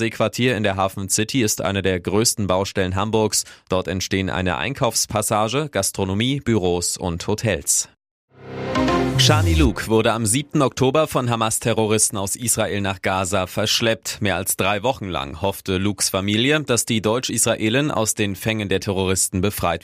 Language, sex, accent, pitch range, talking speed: German, male, German, 95-110 Hz, 150 wpm